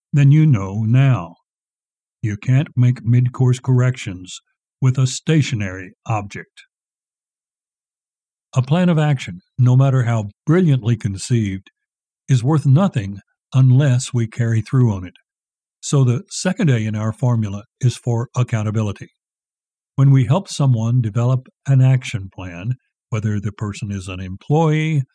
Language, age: English, 60-79